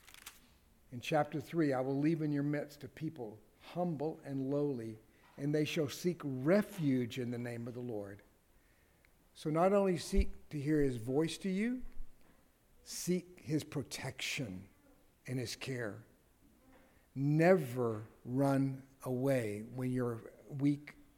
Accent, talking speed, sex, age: American, 135 wpm, male, 60-79